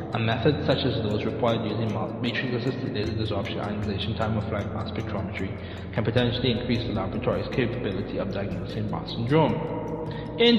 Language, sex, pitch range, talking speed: English, male, 110-145 Hz, 160 wpm